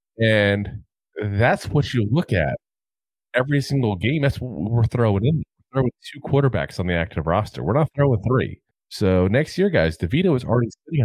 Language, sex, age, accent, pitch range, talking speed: English, male, 30-49, American, 85-120 Hz, 185 wpm